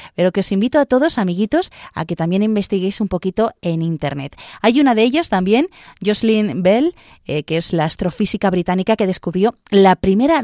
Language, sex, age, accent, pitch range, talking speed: Spanish, female, 30-49, Spanish, 175-225 Hz, 185 wpm